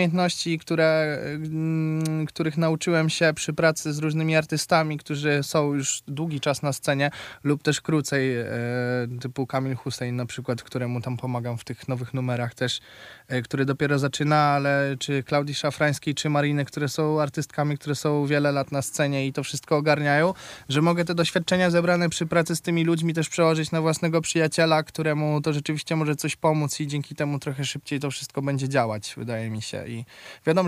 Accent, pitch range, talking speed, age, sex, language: native, 135-155 Hz, 170 wpm, 20-39, male, Polish